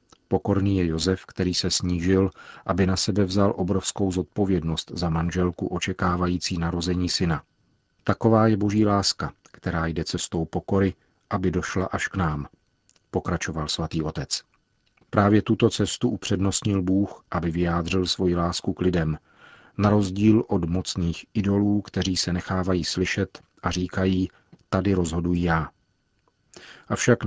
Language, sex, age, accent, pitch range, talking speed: Czech, male, 40-59, native, 85-100 Hz, 130 wpm